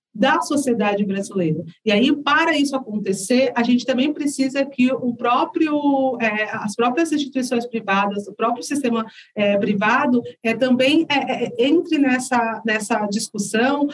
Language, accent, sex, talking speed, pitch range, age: Portuguese, Brazilian, female, 140 wpm, 225-285 Hz, 40-59